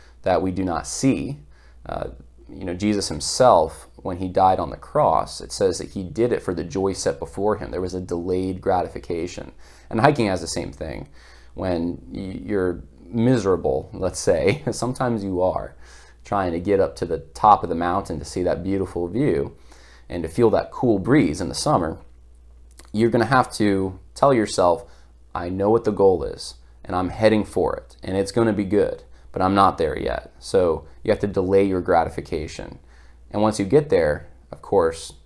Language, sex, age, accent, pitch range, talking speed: English, male, 20-39, American, 65-100 Hz, 190 wpm